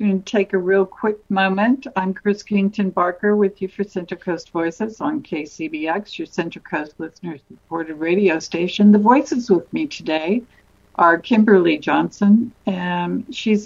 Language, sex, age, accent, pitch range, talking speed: English, female, 60-79, American, 175-215 Hz, 155 wpm